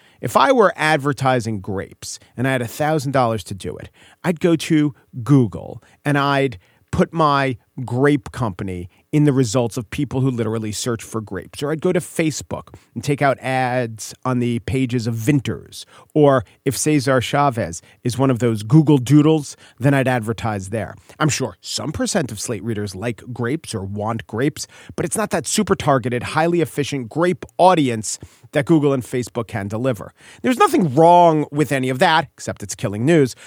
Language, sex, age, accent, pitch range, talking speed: English, male, 40-59, American, 120-165 Hz, 175 wpm